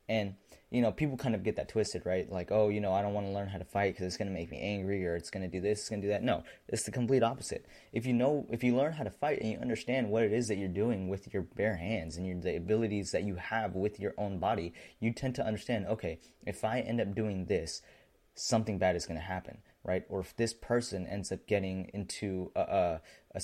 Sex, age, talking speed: male, 20-39, 270 wpm